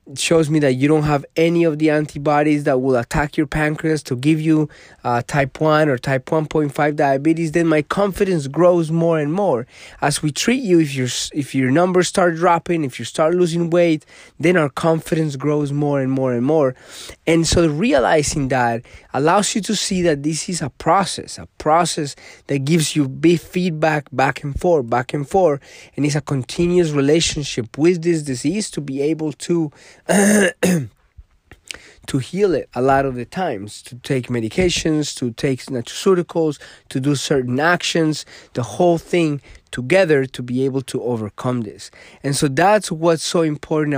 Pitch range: 135-165 Hz